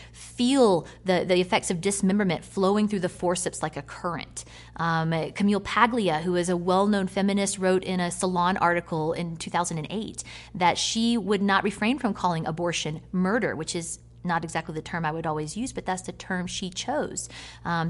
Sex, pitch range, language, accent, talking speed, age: female, 155-195 Hz, English, American, 180 wpm, 30-49